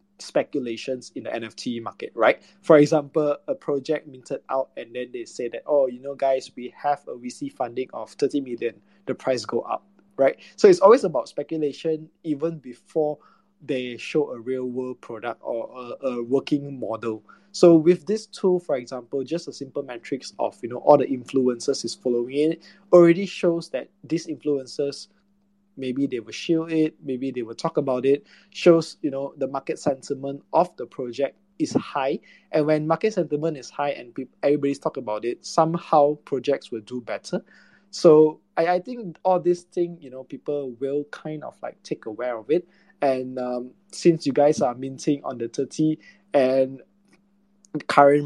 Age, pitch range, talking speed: 20-39, 130-175 Hz, 180 wpm